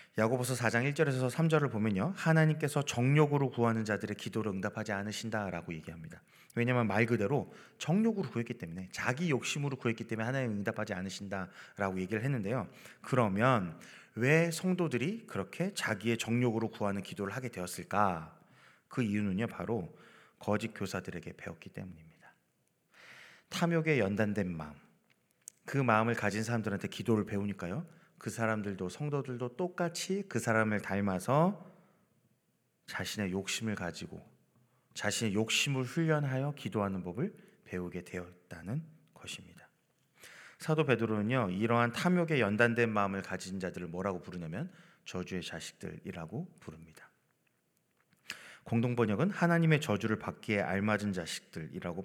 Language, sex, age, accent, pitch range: Korean, male, 30-49, native, 100-140 Hz